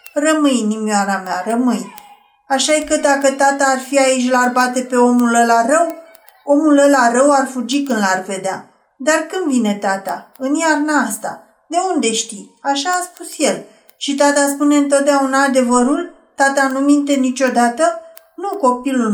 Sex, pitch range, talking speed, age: female, 230-305 Hz, 160 wpm, 40-59